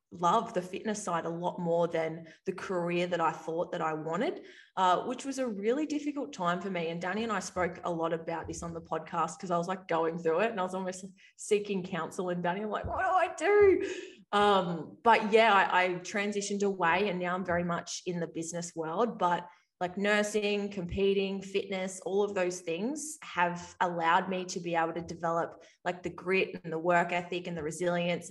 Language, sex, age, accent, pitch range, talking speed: English, female, 20-39, Australian, 165-195 Hz, 210 wpm